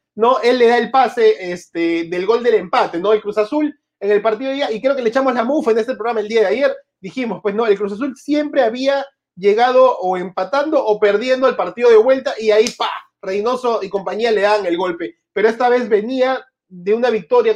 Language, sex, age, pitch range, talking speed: Spanish, male, 30-49, 215-260 Hz, 230 wpm